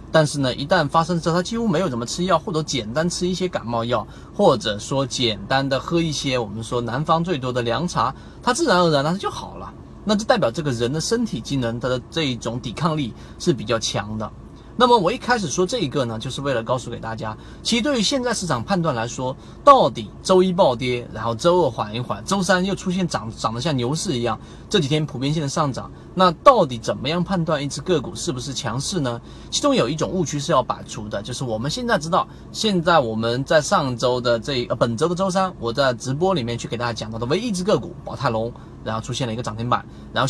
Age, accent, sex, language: 30-49, native, male, Chinese